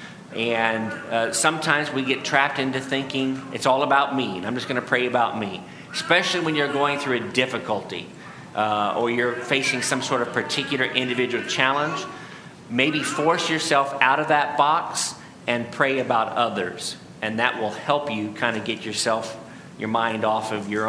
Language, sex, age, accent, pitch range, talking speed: English, male, 40-59, American, 120-150 Hz, 180 wpm